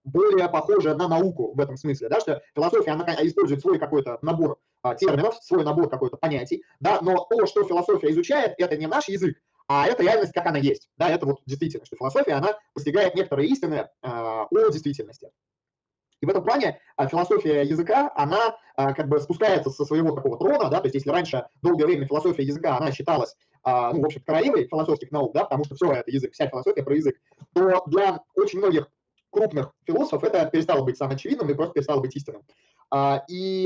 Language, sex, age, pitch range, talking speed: Russian, male, 20-39, 140-190 Hz, 190 wpm